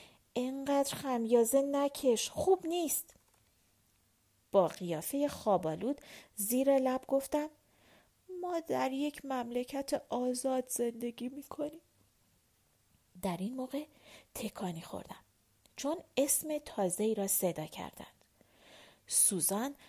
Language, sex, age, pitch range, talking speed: Persian, female, 40-59, 195-290 Hz, 90 wpm